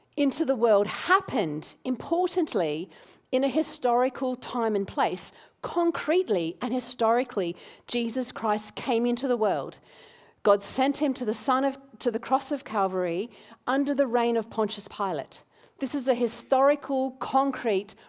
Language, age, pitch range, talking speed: English, 40-59, 185-265 Hz, 145 wpm